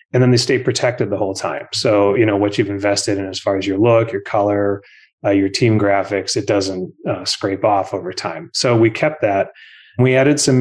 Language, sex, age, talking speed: English, male, 30-49, 225 wpm